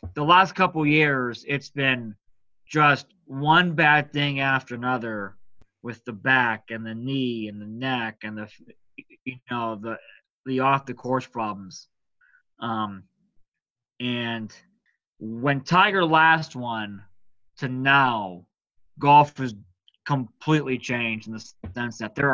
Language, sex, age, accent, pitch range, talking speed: English, male, 20-39, American, 115-145 Hz, 130 wpm